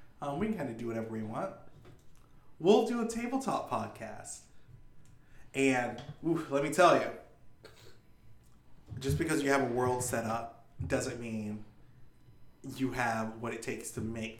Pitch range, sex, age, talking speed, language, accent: 115-140 Hz, male, 20-39, 150 wpm, English, American